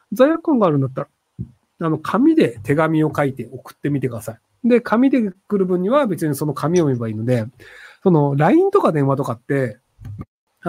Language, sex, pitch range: Japanese, male, 135-220 Hz